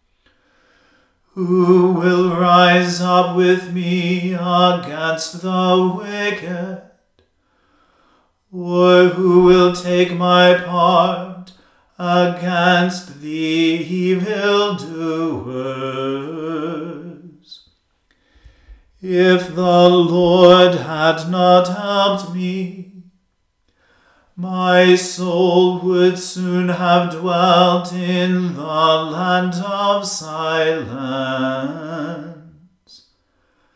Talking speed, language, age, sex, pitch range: 65 wpm, English, 40-59, male, 165-180 Hz